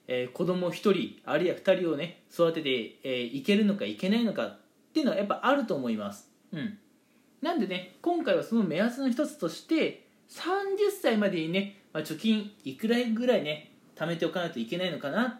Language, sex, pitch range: Japanese, male, 160-265 Hz